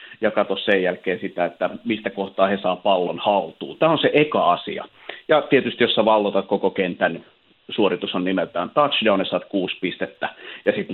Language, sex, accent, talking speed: Finnish, male, native, 180 wpm